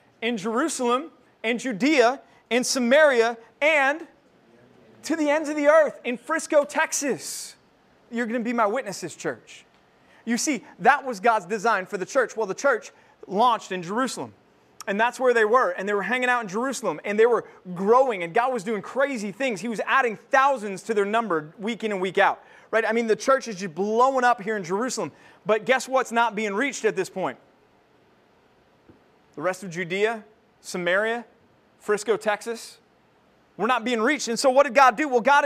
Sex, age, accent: male, 30-49, American